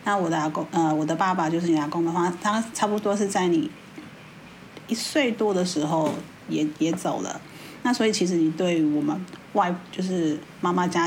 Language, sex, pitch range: Chinese, female, 165-205 Hz